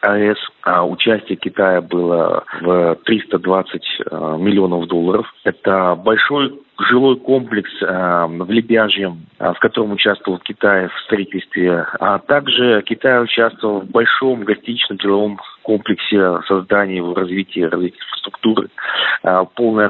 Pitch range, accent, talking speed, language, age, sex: 95-115 Hz, native, 110 wpm, Russian, 40-59, male